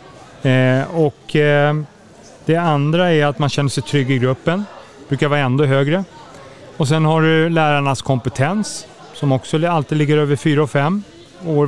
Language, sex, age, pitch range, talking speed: Swedish, male, 30-49, 135-175 Hz, 170 wpm